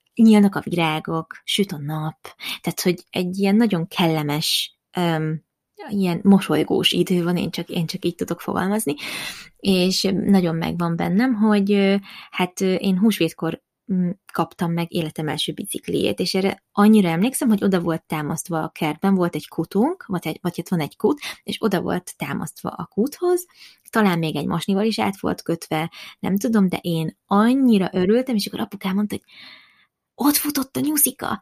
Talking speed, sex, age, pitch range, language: 165 wpm, female, 20-39, 170-220 Hz, Hungarian